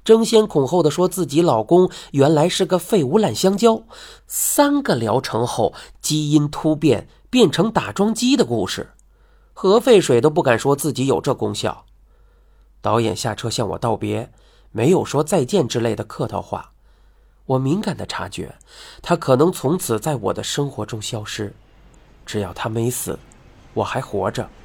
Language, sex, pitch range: Chinese, male, 115-185 Hz